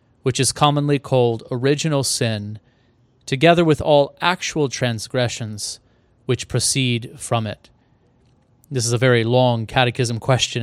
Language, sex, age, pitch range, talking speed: English, male, 30-49, 120-135 Hz, 125 wpm